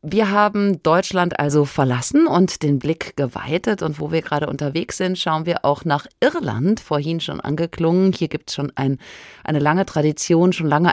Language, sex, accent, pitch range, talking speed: German, female, German, 135-175 Hz, 175 wpm